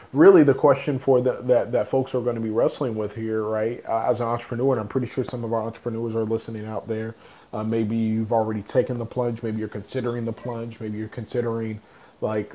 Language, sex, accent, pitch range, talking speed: English, male, American, 110-125 Hz, 225 wpm